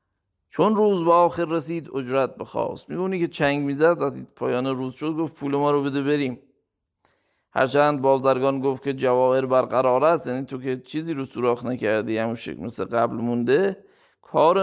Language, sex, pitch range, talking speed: Persian, male, 125-150 Hz, 165 wpm